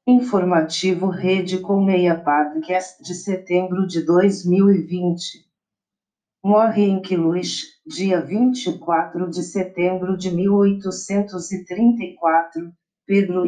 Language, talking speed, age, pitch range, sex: Portuguese, 85 wpm, 50-69, 170-195 Hz, female